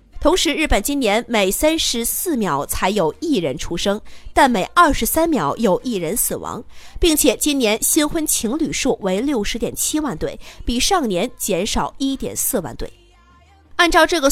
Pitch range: 215-310 Hz